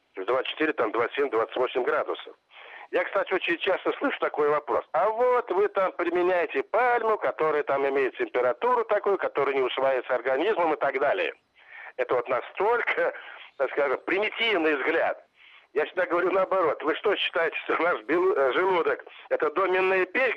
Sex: male